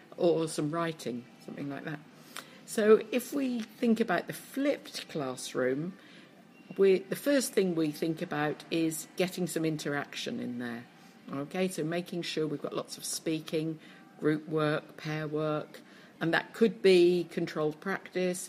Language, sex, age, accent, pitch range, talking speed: English, female, 50-69, British, 150-190 Hz, 145 wpm